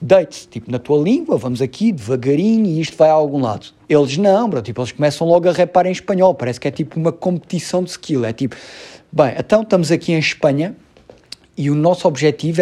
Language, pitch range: Portuguese, 135-180 Hz